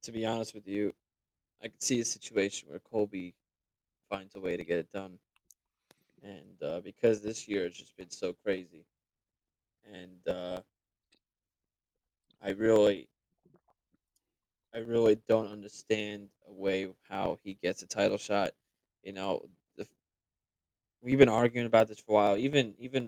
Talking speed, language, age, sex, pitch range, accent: 150 wpm, English, 20-39, male, 100-125 Hz, American